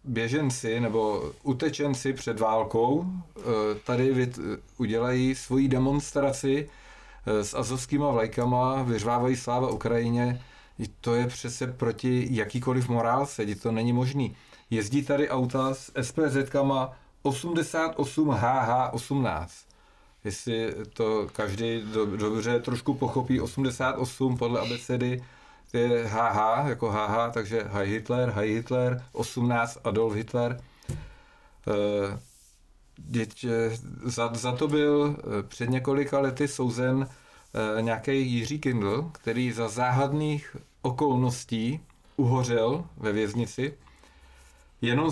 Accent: native